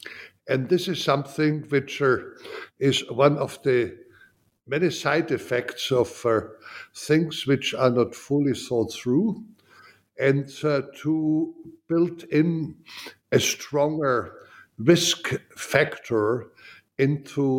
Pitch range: 120-150 Hz